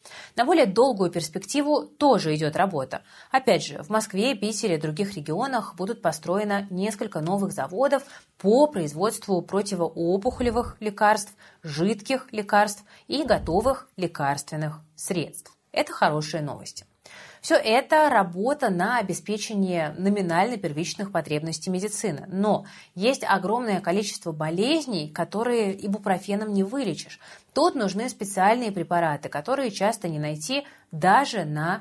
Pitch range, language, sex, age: 175-230 Hz, Russian, female, 30-49